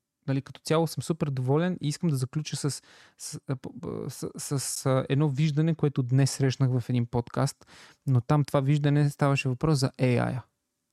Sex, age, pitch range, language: male, 20-39, 130-155 Hz, Bulgarian